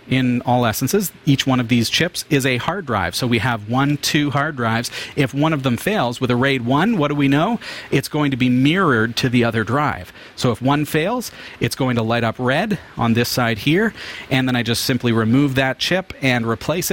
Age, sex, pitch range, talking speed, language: 40-59, male, 110-135 Hz, 230 wpm, English